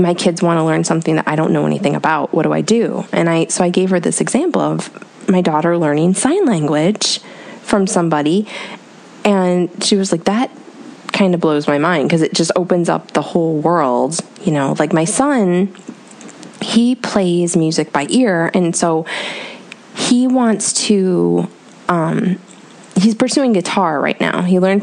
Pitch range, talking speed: 165-210 Hz, 175 wpm